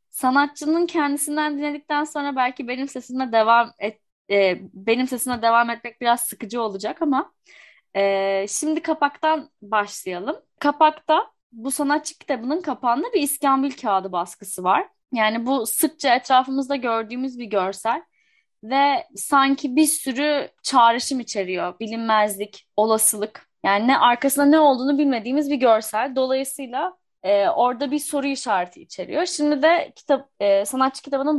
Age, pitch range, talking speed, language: 10-29, 220-295 Hz, 130 wpm, Turkish